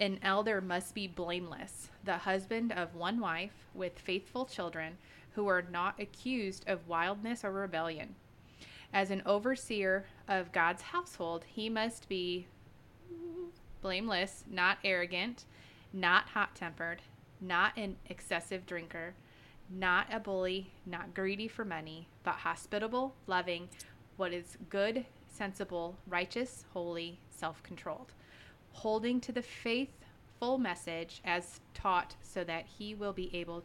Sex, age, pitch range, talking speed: female, 20-39, 175-215 Hz, 125 wpm